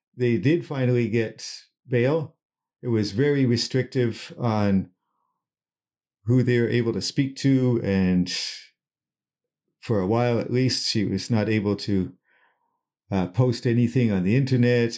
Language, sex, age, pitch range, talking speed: English, male, 50-69, 110-140 Hz, 135 wpm